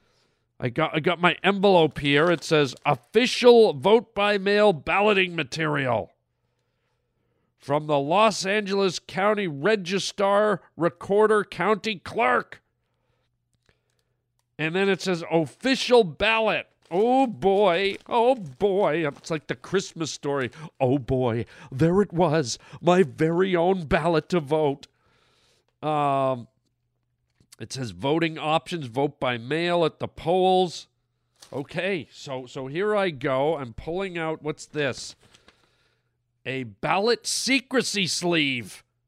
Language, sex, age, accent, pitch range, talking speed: English, male, 50-69, American, 130-205 Hz, 115 wpm